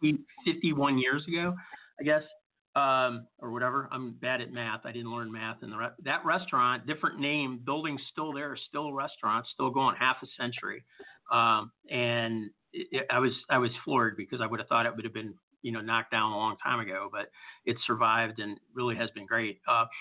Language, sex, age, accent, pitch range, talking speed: English, male, 40-59, American, 115-140 Hz, 205 wpm